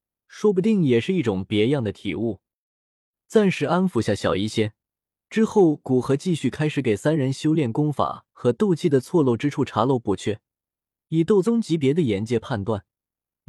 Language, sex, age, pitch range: Chinese, male, 20-39, 110-160 Hz